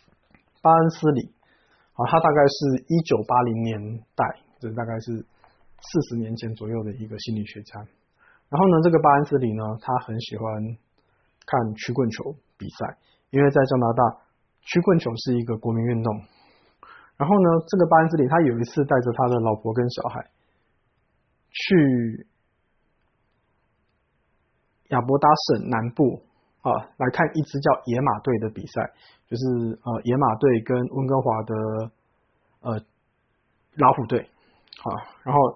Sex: male